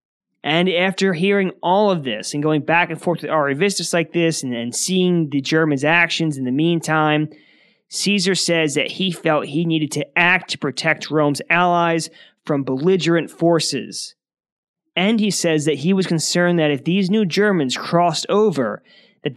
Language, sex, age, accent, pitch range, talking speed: English, male, 20-39, American, 155-185 Hz, 170 wpm